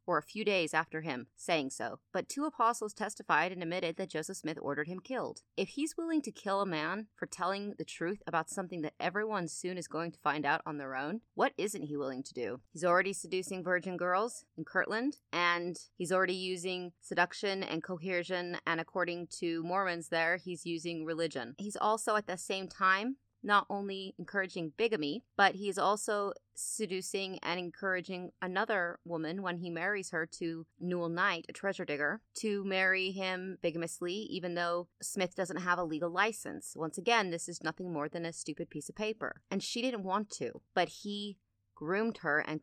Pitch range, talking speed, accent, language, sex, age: 160-195 Hz, 190 wpm, American, English, female, 30-49